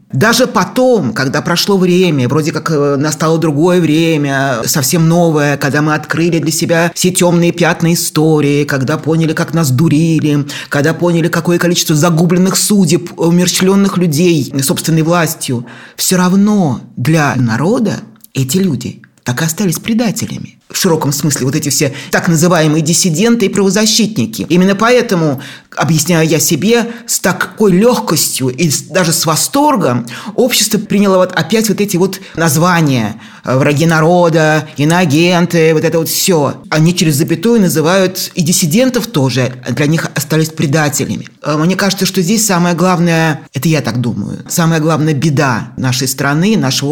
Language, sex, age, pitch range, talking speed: Russian, male, 20-39, 145-180 Hz, 140 wpm